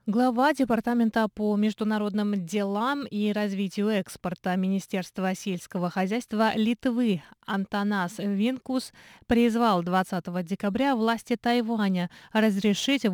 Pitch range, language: 195-235 Hz, Russian